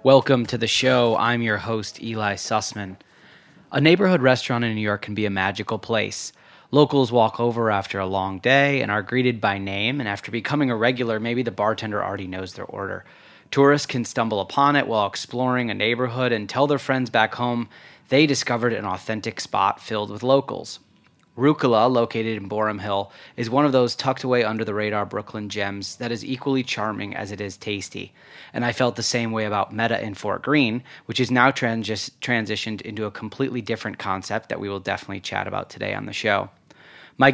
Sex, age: male, 30-49